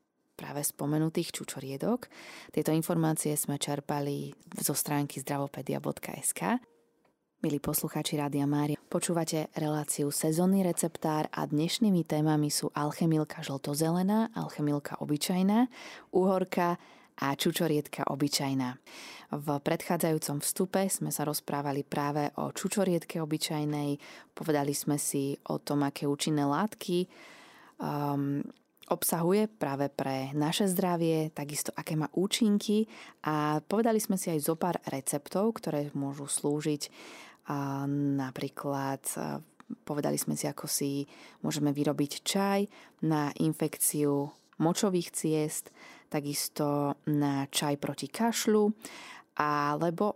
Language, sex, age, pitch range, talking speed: Slovak, female, 20-39, 145-175 Hz, 105 wpm